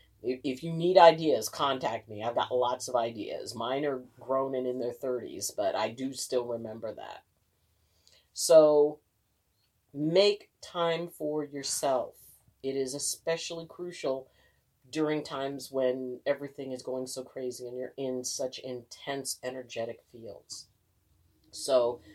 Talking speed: 135 wpm